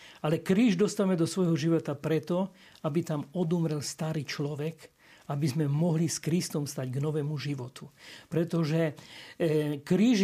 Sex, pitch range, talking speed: male, 160-205 Hz, 140 wpm